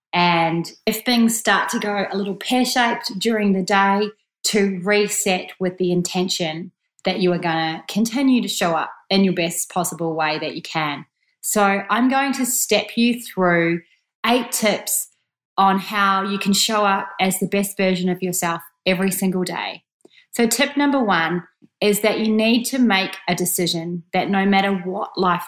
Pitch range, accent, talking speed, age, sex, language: 170-210 Hz, Australian, 175 wpm, 30-49, female, English